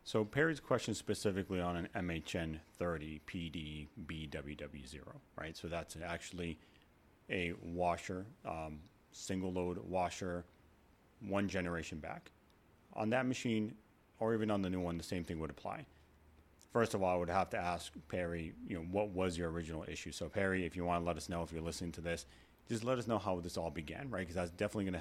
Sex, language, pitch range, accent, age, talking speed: male, English, 85-100 Hz, American, 30-49, 195 wpm